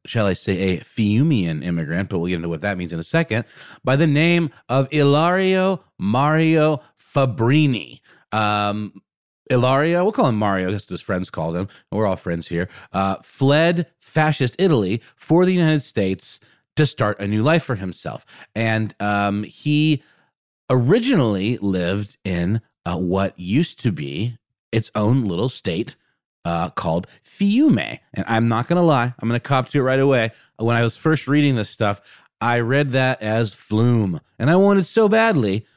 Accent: American